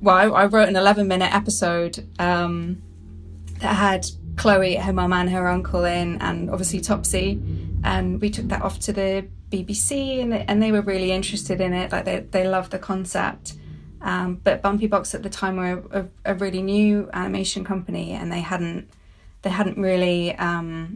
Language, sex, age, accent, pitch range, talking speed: English, female, 20-39, British, 175-200 Hz, 185 wpm